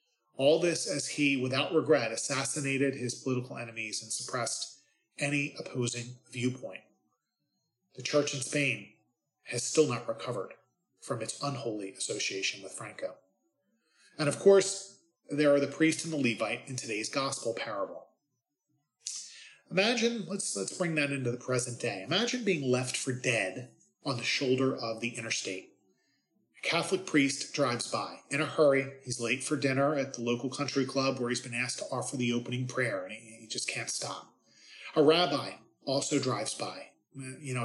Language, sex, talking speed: English, male, 160 wpm